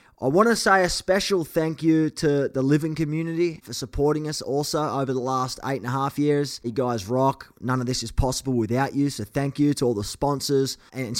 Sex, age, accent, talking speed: male, 20-39, Australian, 225 wpm